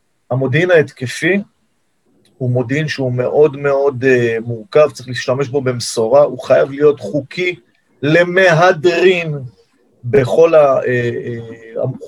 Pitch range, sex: 120-150 Hz, male